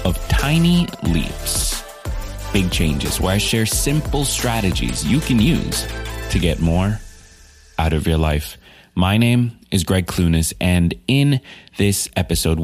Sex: male